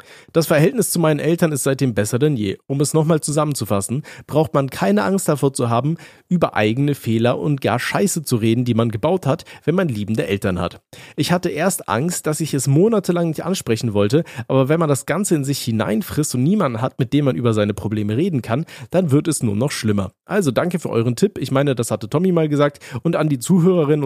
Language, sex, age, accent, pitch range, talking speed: German, male, 40-59, German, 120-160 Hz, 225 wpm